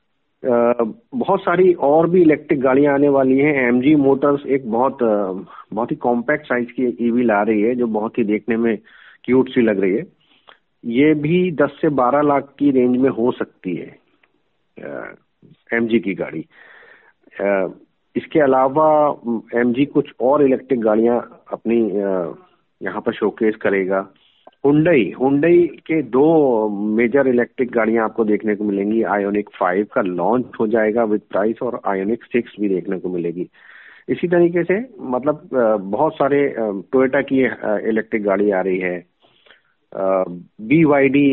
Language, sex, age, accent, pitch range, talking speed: Hindi, male, 50-69, native, 105-140 Hz, 150 wpm